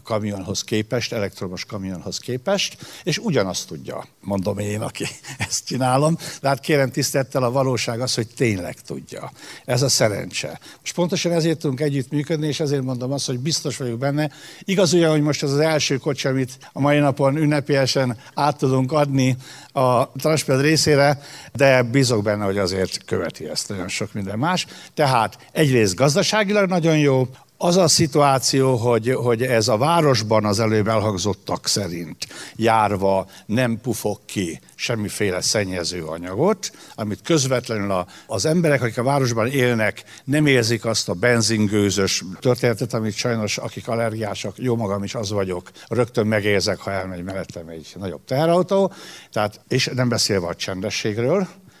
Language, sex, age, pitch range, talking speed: Hungarian, male, 60-79, 105-145 Hz, 150 wpm